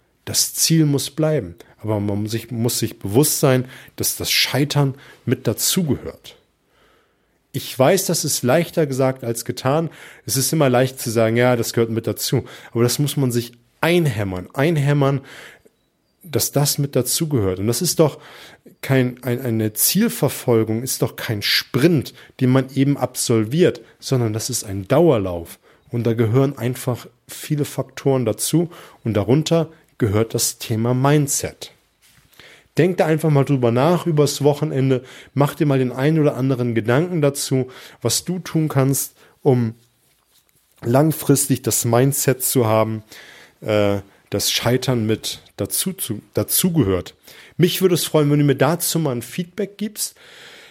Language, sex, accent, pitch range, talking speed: German, male, German, 115-150 Hz, 145 wpm